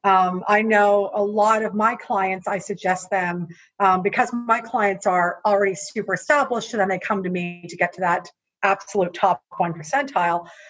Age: 50-69